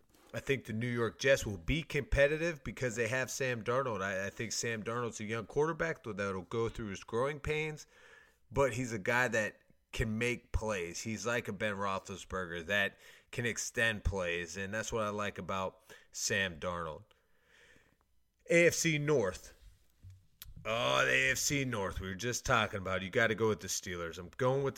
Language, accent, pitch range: English, American, 100-130 Hz